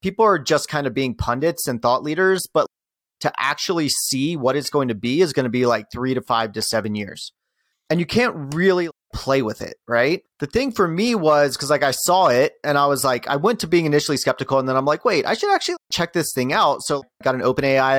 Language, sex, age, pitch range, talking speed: English, male, 30-49, 125-155 Hz, 255 wpm